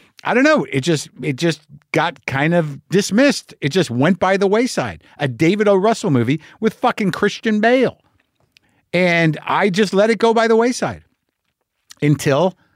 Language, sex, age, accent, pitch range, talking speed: English, male, 50-69, American, 125-175 Hz, 165 wpm